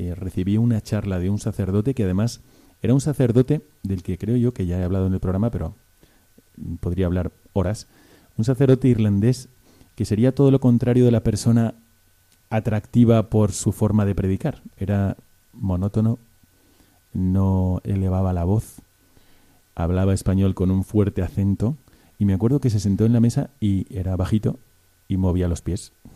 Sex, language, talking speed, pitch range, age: male, Spanish, 165 wpm, 95-115 Hz, 30-49